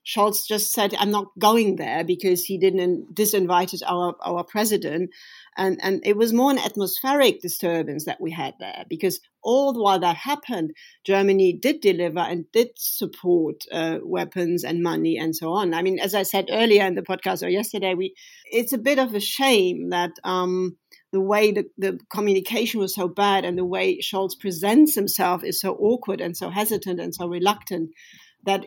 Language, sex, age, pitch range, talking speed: English, female, 50-69, 175-210 Hz, 185 wpm